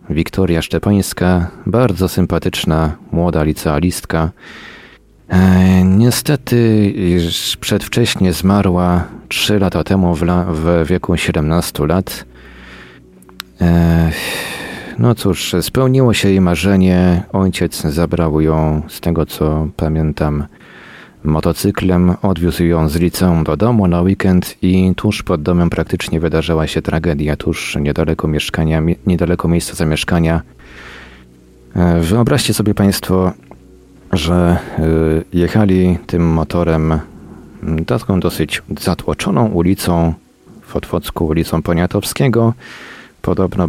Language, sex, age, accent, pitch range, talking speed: Polish, male, 40-59, native, 80-95 Hz, 95 wpm